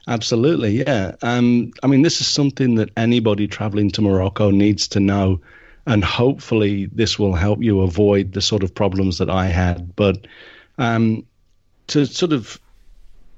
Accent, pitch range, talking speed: British, 100-125 Hz, 160 wpm